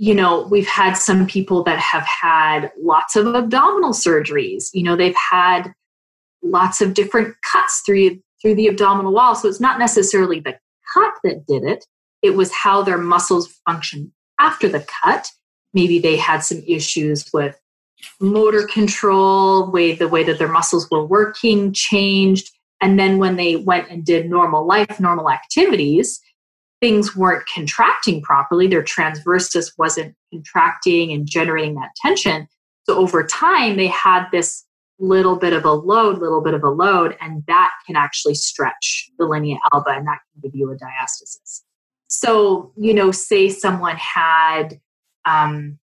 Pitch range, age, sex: 160-200 Hz, 30-49, female